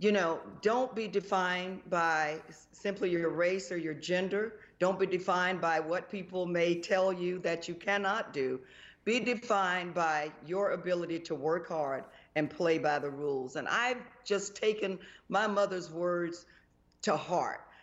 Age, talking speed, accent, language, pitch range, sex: 40-59, 160 wpm, American, English, 170-230 Hz, female